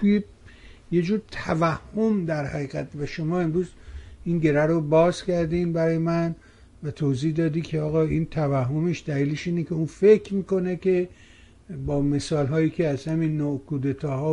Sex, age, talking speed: male, 60-79, 150 wpm